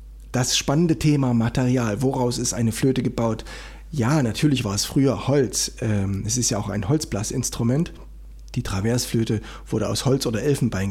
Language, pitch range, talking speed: German, 105-135 Hz, 155 wpm